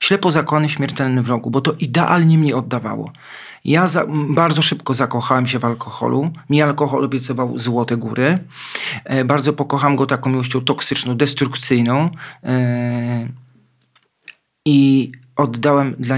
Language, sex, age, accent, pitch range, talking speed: Polish, male, 40-59, native, 125-145 Hz, 130 wpm